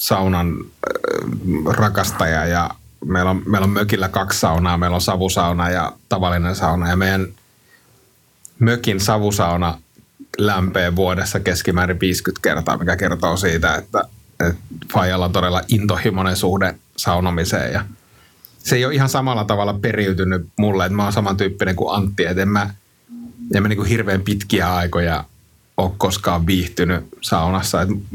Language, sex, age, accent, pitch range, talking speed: Finnish, male, 30-49, native, 90-110 Hz, 135 wpm